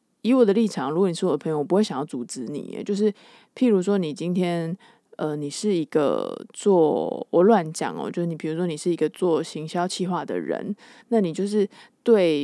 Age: 20-39